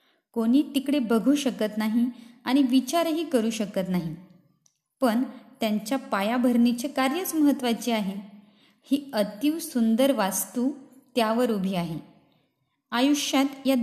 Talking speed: 110 wpm